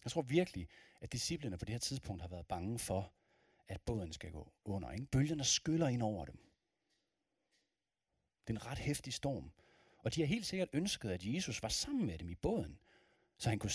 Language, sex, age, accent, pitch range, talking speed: Danish, male, 40-59, native, 105-160 Hz, 200 wpm